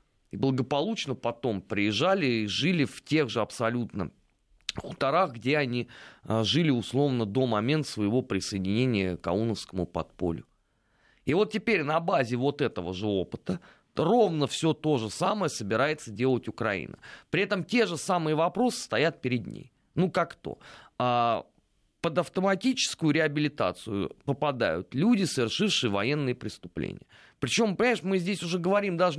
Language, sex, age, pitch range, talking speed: Russian, male, 30-49, 115-165 Hz, 140 wpm